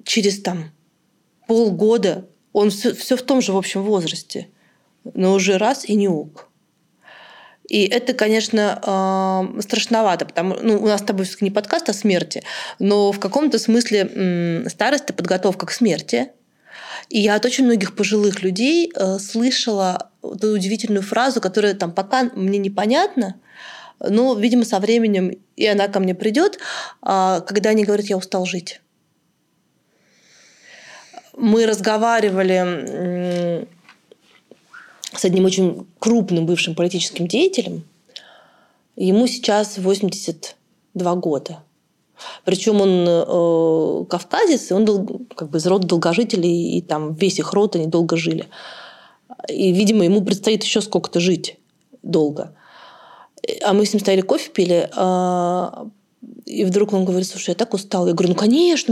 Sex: female